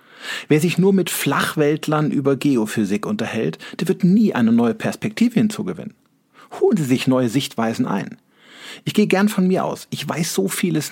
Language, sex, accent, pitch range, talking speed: German, male, German, 145-215 Hz, 170 wpm